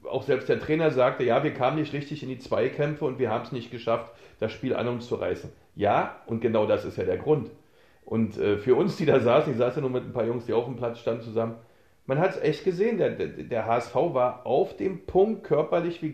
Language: German